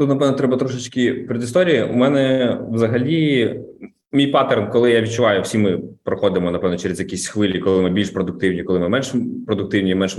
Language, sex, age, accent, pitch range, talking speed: Russian, male, 20-39, native, 110-135 Hz, 170 wpm